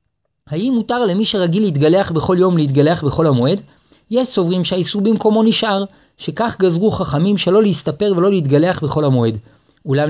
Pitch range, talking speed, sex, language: 145-190 Hz, 150 wpm, male, Hebrew